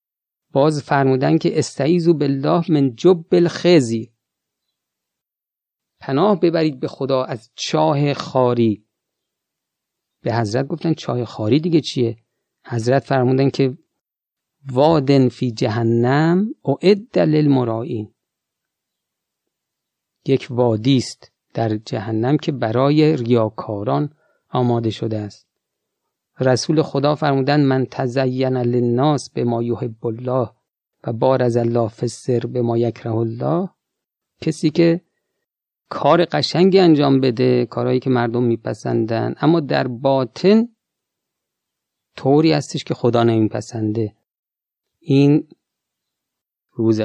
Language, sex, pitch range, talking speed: Persian, male, 115-150 Hz, 100 wpm